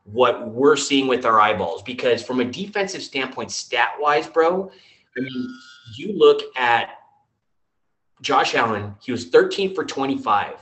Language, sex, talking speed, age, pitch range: English, male, 145 wpm, 30-49, 115-155 Hz